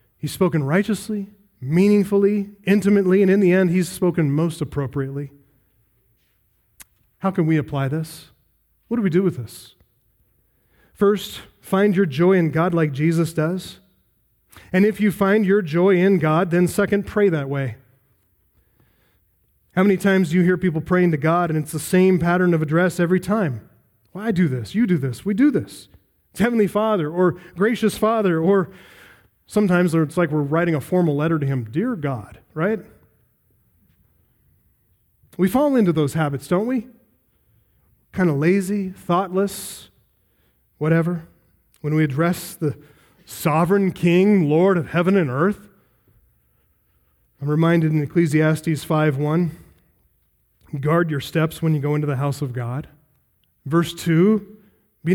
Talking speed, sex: 150 wpm, male